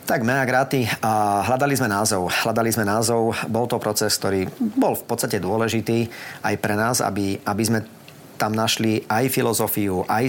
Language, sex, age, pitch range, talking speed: Slovak, male, 30-49, 100-120 Hz, 165 wpm